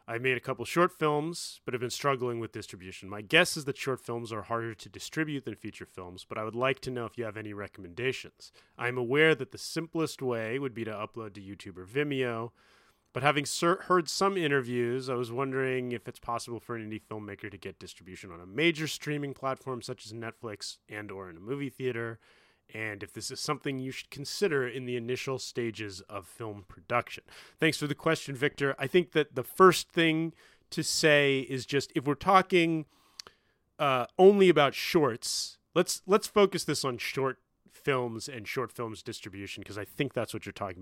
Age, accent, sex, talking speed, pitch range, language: 30-49, American, male, 205 wpm, 105-145 Hz, English